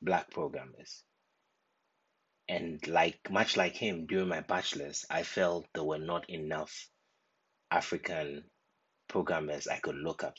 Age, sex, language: 30-49, male, English